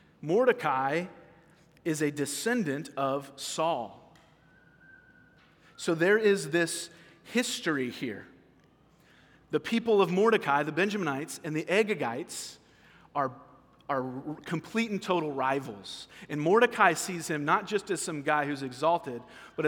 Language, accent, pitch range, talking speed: English, American, 140-175 Hz, 120 wpm